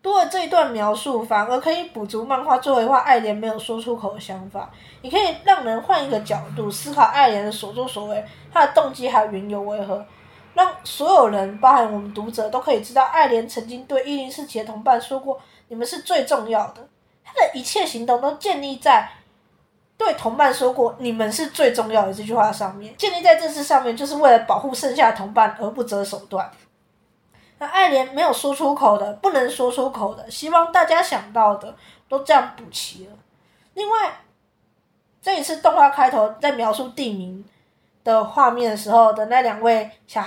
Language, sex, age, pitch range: Chinese, female, 20-39, 215-290 Hz